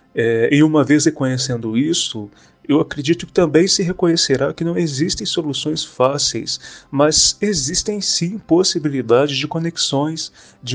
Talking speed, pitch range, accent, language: 130 wpm, 125-150 Hz, Brazilian, Portuguese